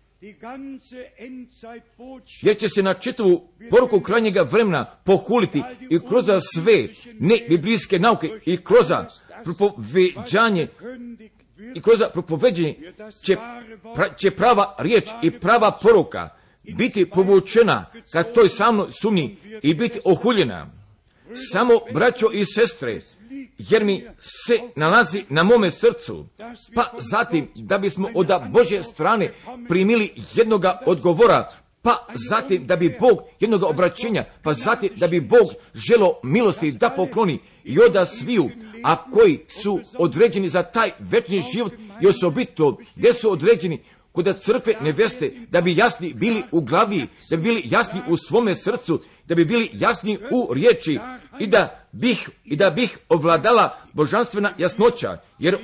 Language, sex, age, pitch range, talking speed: Croatian, male, 50-69, 180-235 Hz, 135 wpm